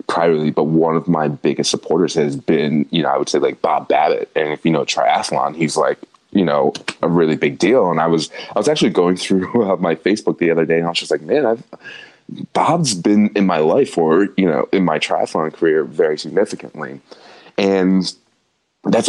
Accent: American